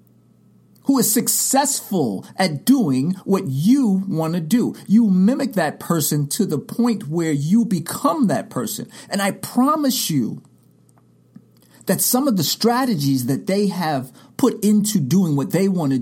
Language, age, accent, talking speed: English, 50-69, American, 150 wpm